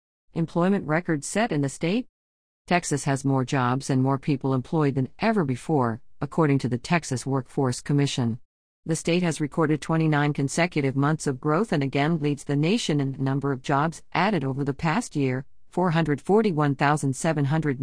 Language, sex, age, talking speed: English, female, 50-69, 160 wpm